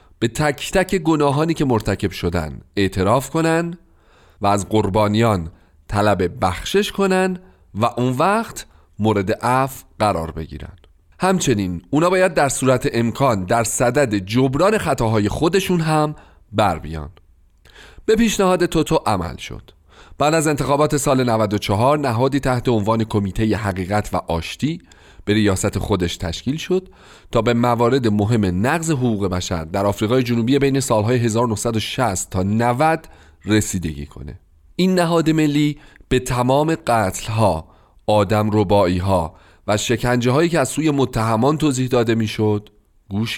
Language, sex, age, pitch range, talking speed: Persian, male, 40-59, 100-145 Hz, 130 wpm